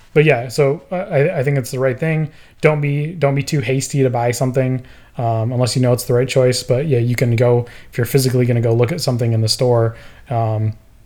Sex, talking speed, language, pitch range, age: male, 240 wpm, English, 115-135 Hz, 20-39